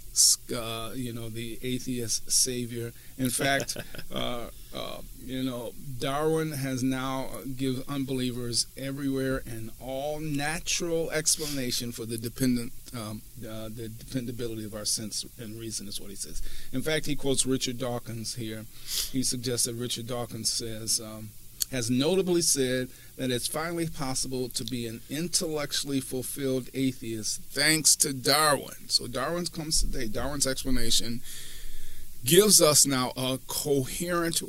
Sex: male